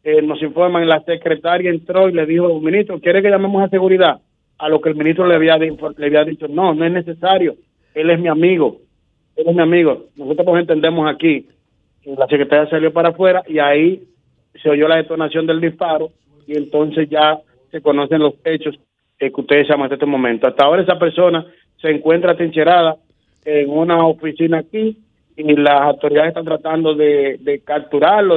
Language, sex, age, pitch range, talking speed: Spanish, male, 30-49, 150-170 Hz, 190 wpm